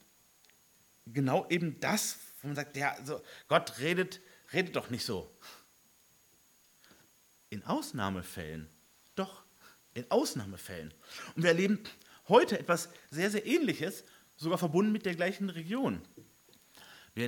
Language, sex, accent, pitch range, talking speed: German, male, German, 135-195 Hz, 120 wpm